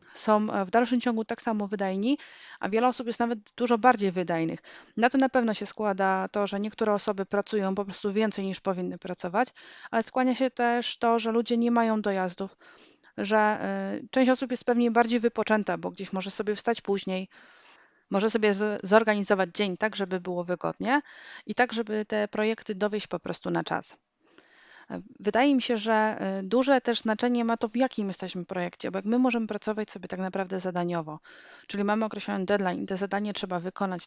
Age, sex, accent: 30-49, female, native